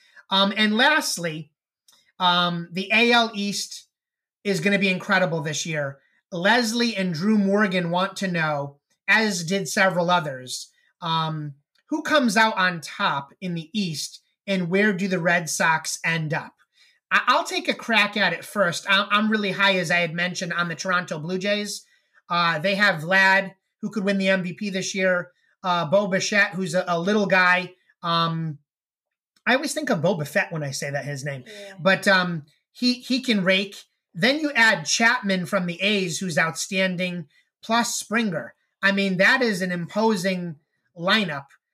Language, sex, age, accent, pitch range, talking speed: English, male, 30-49, American, 175-210 Hz, 170 wpm